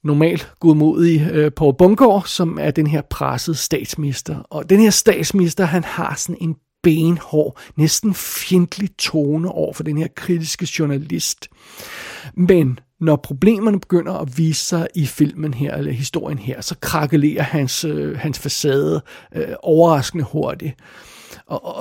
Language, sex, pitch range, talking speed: Danish, male, 150-185 Hz, 145 wpm